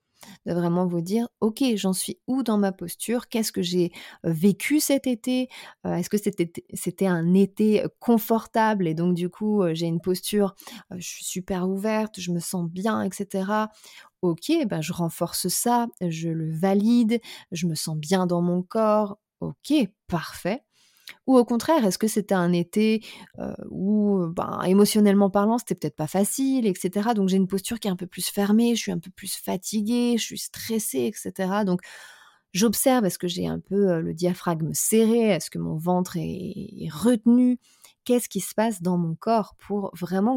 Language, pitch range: French, 180-220 Hz